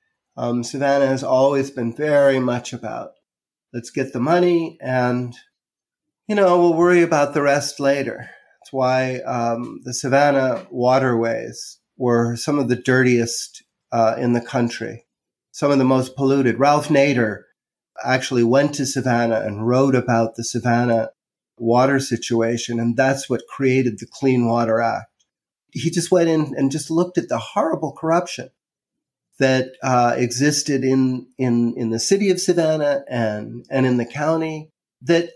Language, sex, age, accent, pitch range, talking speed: English, male, 40-59, American, 120-160 Hz, 150 wpm